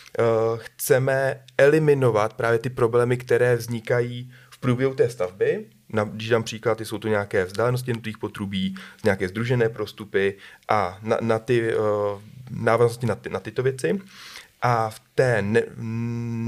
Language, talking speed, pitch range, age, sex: Slovak, 130 wpm, 110-130 Hz, 30-49, male